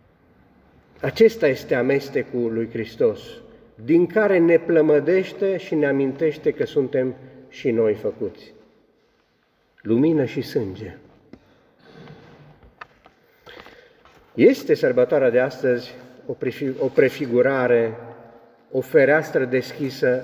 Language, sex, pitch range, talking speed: Romanian, male, 120-170 Hz, 85 wpm